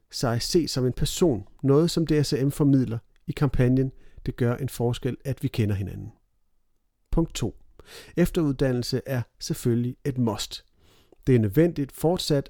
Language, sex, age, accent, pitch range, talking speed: Danish, male, 40-59, native, 115-150 Hz, 145 wpm